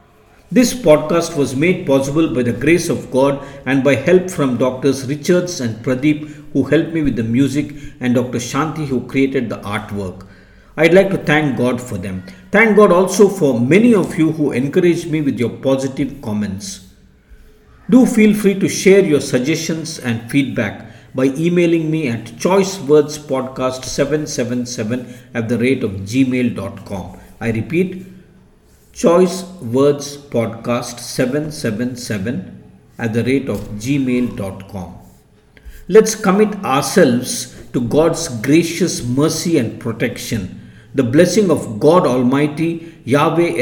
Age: 50-69